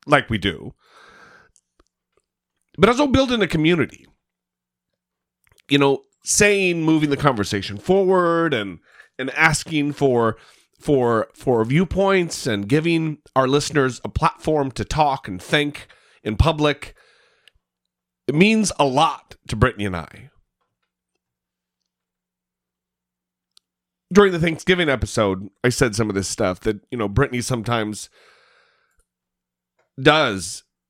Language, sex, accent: English, male, American